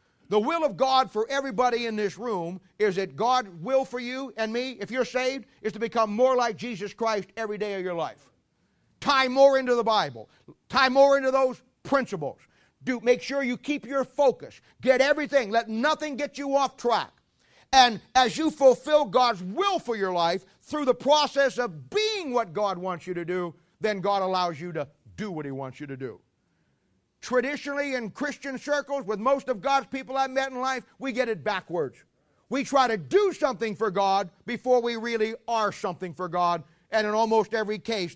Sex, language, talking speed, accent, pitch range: male, English, 195 wpm, American, 205-270 Hz